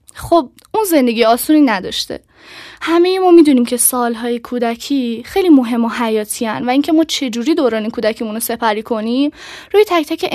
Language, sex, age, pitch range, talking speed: Persian, female, 10-29, 230-315 Hz, 160 wpm